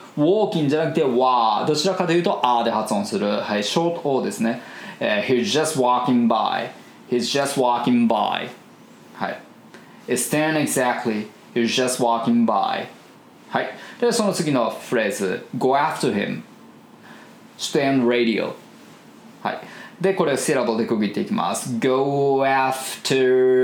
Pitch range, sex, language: 125-170 Hz, male, Japanese